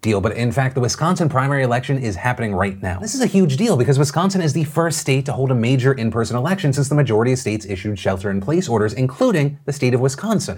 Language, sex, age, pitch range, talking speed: English, male, 30-49, 105-150 Hz, 235 wpm